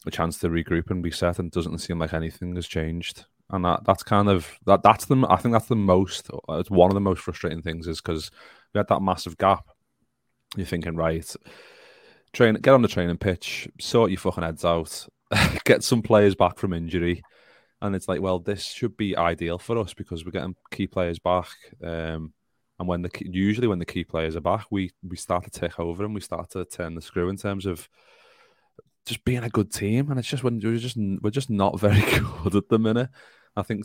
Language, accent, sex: English, British, male